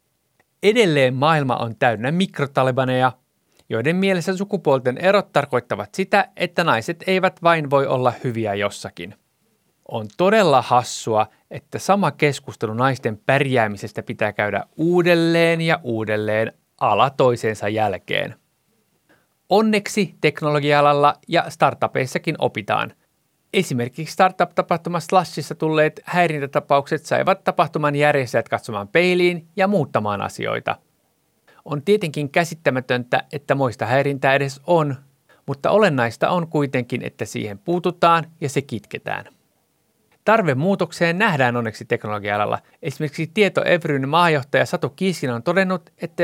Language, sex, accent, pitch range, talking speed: Finnish, male, native, 125-175 Hz, 110 wpm